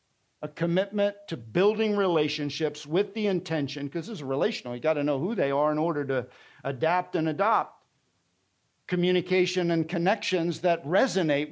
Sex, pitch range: male, 135-175 Hz